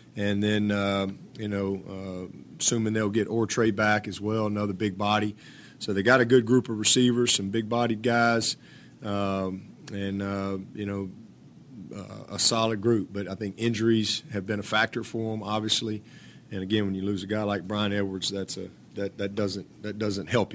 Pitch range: 100-115 Hz